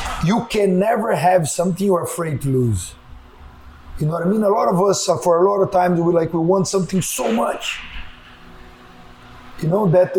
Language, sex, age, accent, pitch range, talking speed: English, male, 30-49, Brazilian, 165-195 Hz, 195 wpm